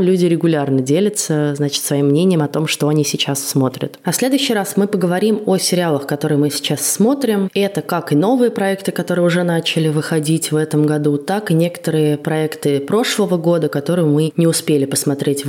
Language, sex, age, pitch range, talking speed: Russian, female, 20-39, 145-185 Hz, 175 wpm